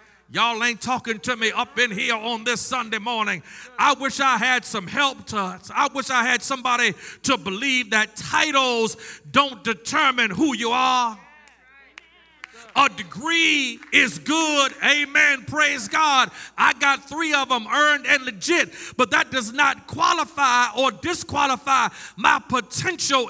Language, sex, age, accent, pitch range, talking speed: English, male, 40-59, American, 235-285 Hz, 145 wpm